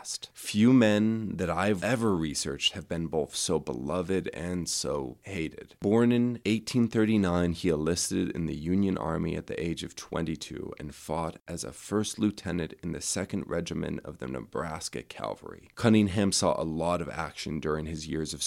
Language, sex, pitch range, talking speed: English, male, 80-100 Hz, 170 wpm